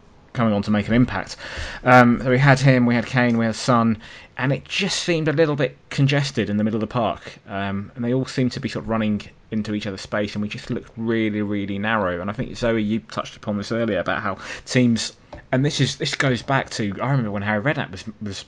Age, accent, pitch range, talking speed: 20-39, British, 100-125 Hz, 250 wpm